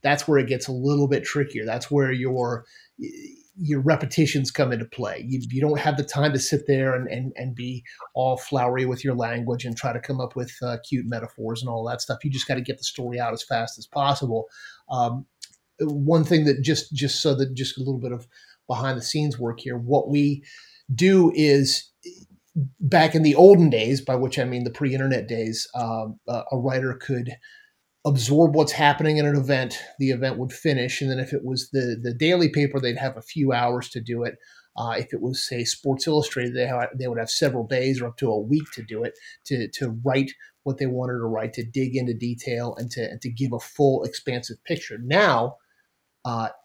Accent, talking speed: American, 220 wpm